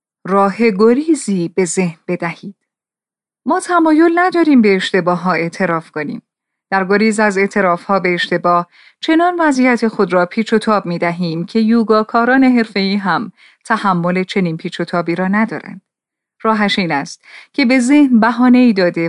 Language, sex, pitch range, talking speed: Persian, female, 180-250 Hz, 155 wpm